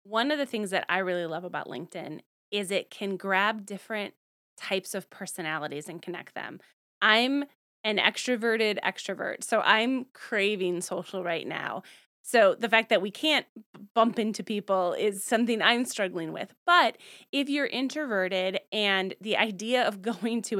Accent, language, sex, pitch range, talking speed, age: American, English, female, 185-220 Hz, 160 wpm, 20-39